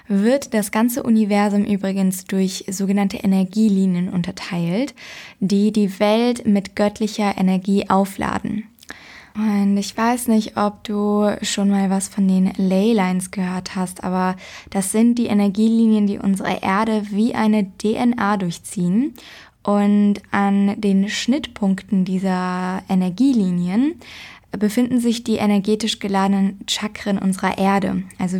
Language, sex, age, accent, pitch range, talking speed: English, female, 20-39, German, 195-215 Hz, 120 wpm